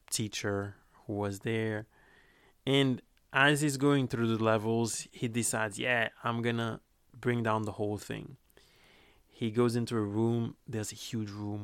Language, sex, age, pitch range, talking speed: English, male, 20-39, 105-125 Hz, 160 wpm